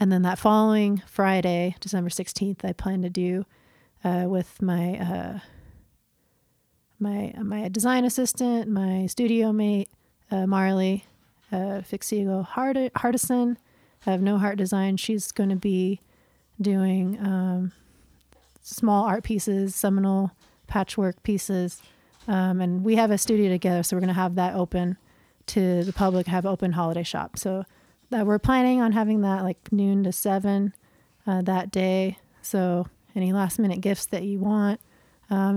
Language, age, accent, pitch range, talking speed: English, 30-49, American, 185-205 Hz, 150 wpm